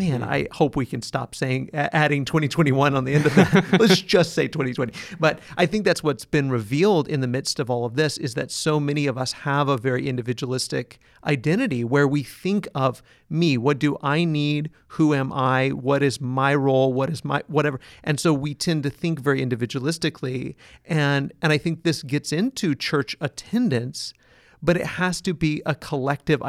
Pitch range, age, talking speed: 135-165 Hz, 40-59, 195 wpm